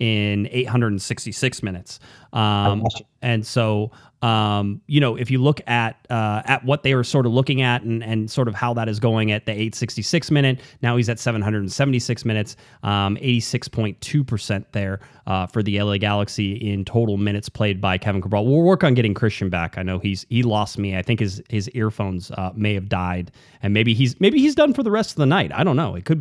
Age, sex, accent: 30-49, male, American